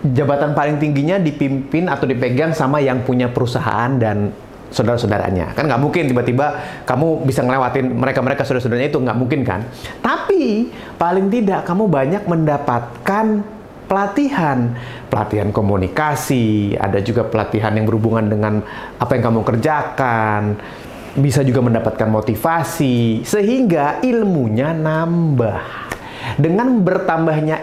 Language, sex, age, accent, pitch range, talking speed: Indonesian, male, 30-49, native, 125-170 Hz, 115 wpm